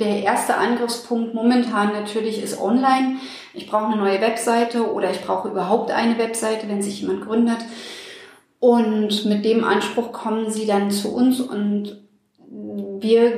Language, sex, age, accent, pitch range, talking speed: German, female, 30-49, German, 205-235 Hz, 150 wpm